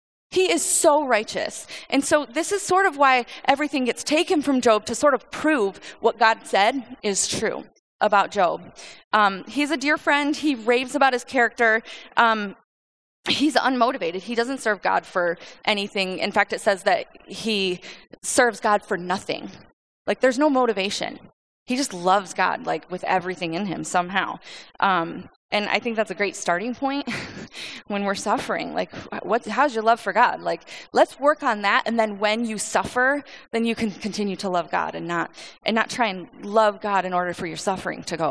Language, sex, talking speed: English, female, 190 wpm